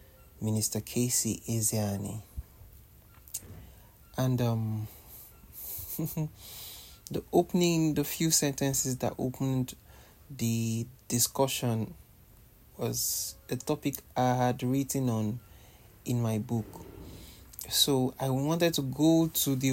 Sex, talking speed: male, 95 wpm